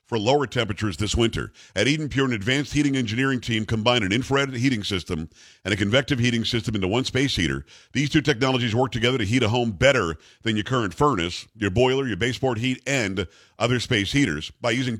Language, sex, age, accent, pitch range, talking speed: English, male, 50-69, American, 105-140 Hz, 205 wpm